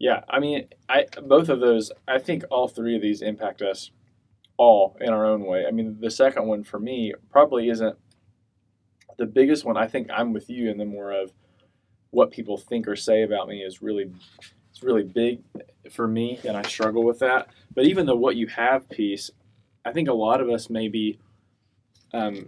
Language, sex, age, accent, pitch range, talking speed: English, male, 20-39, American, 105-120 Hz, 205 wpm